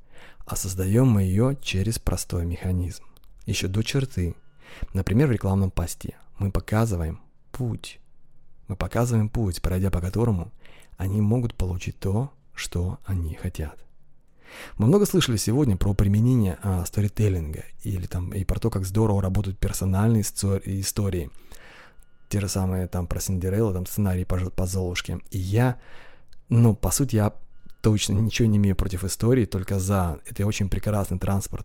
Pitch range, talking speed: 90-110 Hz, 135 wpm